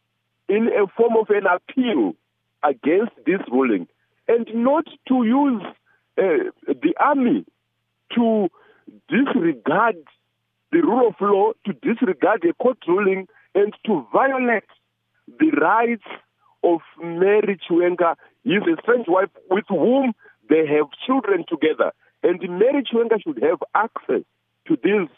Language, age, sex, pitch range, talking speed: English, 50-69, male, 185-310 Hz, 125 wpm